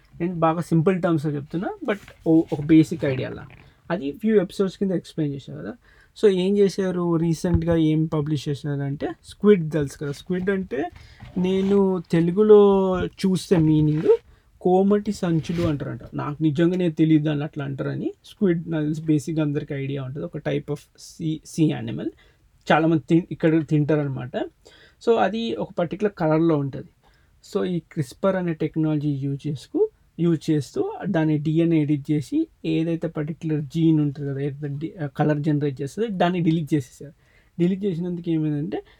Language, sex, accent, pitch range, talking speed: Telugu, male, native, 150-180 Hz, 145 wpm